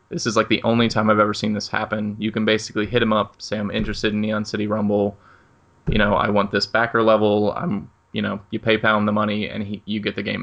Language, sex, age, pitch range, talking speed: English, male, 20-39, 105-115 Hz, 260 wpm